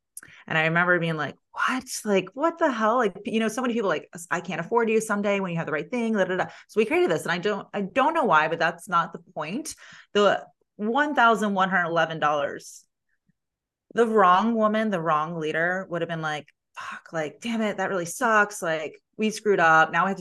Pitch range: 155-195 Hz